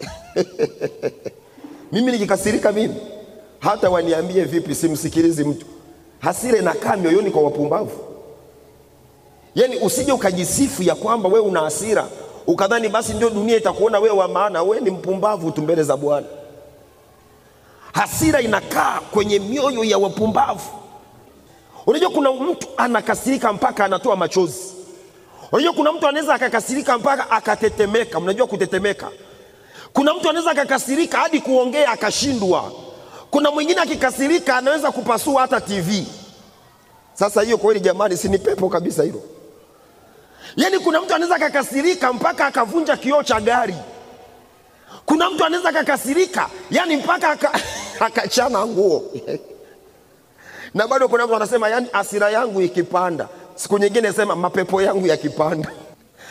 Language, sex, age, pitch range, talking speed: Swahili, male, 40-59, 195-300 Hz, 120 wpm